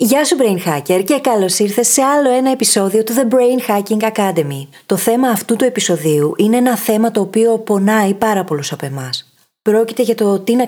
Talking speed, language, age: 200 wpm, Greek, 20-39